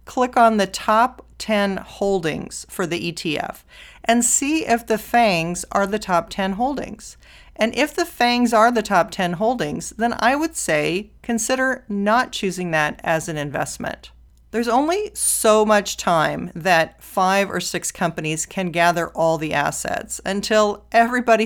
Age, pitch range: 40-59, 170-220 Hz